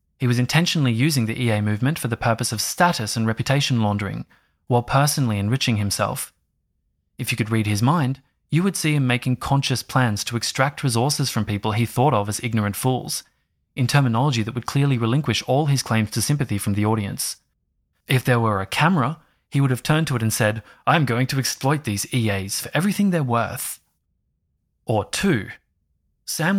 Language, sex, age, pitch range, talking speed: English, male, 20-39, 110-145 Hz, 185 wpm